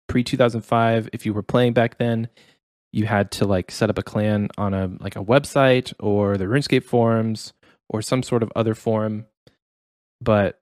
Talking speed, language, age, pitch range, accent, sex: 180 wpm, English, 20-39, 105-125 Hz, American, male